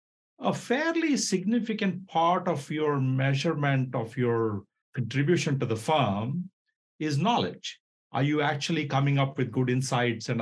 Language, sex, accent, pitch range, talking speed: English, male, Indian, 120-160 Hz, 140 wpm